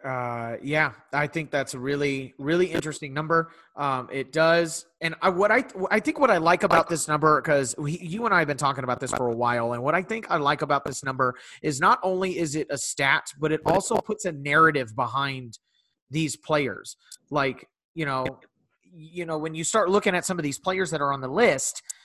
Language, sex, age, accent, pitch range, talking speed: English, male, 30-49, American, 150-200 Hz, 225 wpm